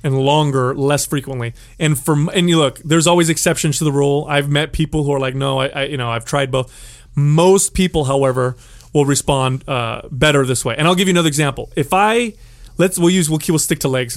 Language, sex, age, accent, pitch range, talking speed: English, male, 30-49, American, 130-170 Hz, 235 wpm